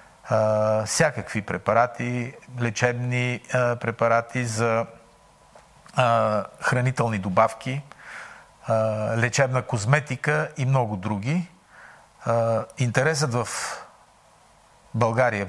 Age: 50-69